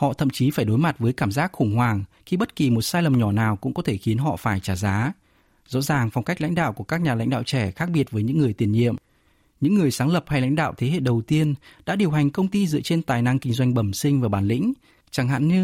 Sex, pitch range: male, 115-155 Hz